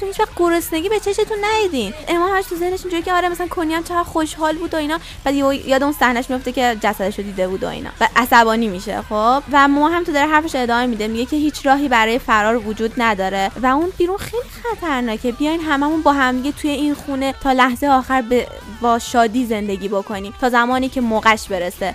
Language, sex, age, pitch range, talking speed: Persian, female, 20-39, 220-285 Hz, 215 wpm